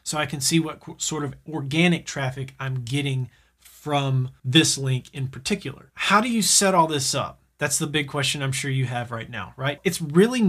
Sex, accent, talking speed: male, American, 205 wpm